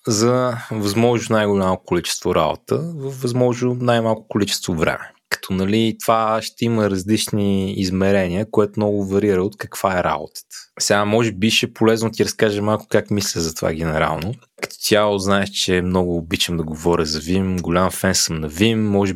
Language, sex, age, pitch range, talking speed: Bulgarian, male, 20-39, 90-110 Hz, 165 wpm